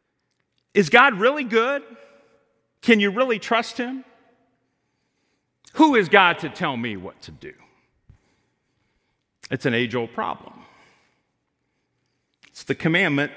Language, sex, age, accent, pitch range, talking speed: English, male, 40-59, American, 130-195 Hz, 110 wpm